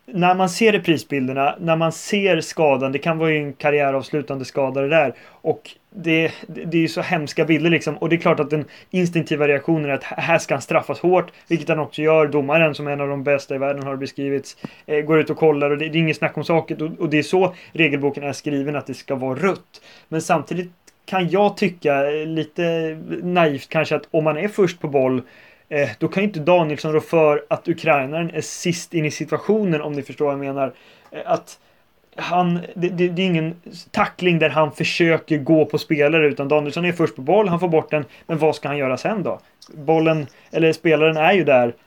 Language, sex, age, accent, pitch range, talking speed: Swedish, male, 30-49, native, 145-170 Hz, 215 wpm